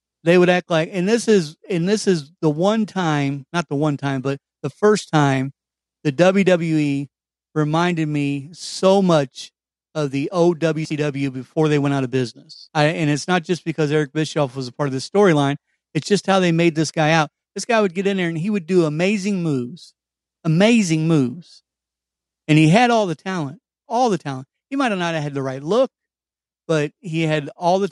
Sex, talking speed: male, 200 wpm